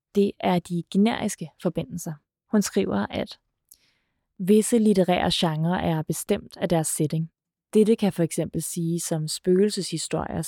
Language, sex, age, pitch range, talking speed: Danish, female, 20-39, 165-190 Hz, 125 wpm